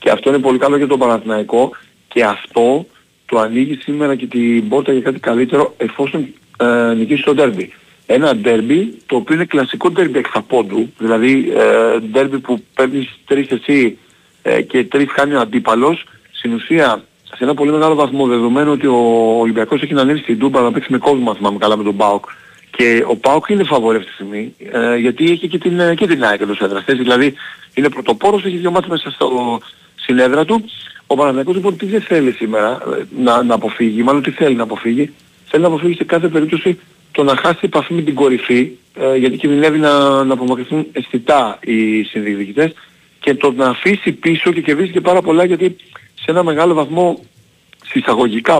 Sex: male